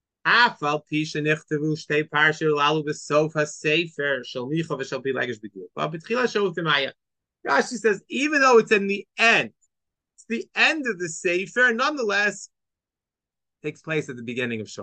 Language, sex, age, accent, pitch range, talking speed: English, male, 30-49, American, 145-195 Hz, 70 wpm